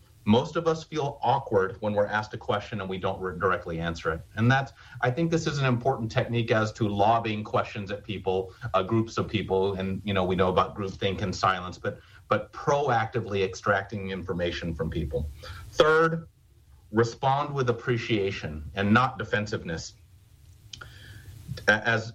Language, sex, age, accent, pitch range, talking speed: English, male, 40-59, American, 100-125 Hz, 165 wpm